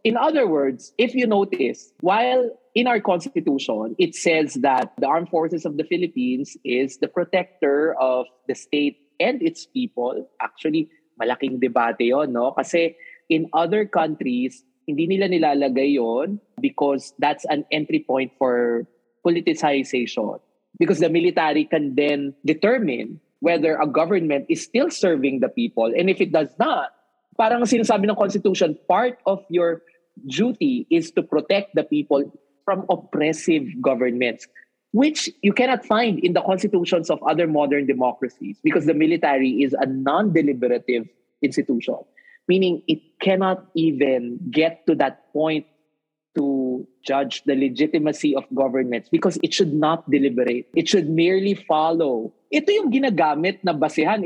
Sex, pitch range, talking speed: male, 145-215 Hz, 145 wpm